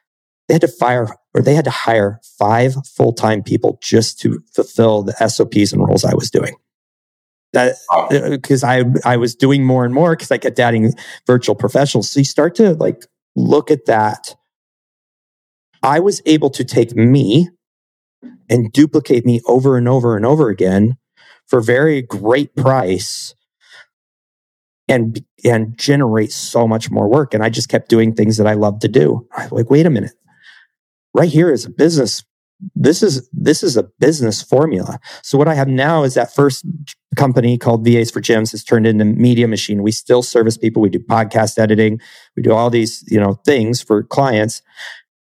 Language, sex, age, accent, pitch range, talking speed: English, male, 40-59, American, 110-140 Hz, 180 wpm